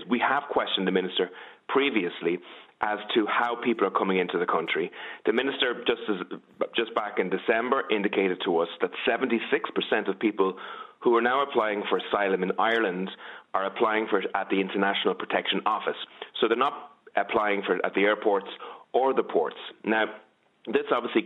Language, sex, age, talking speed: English, male, 30-49, 170 wpm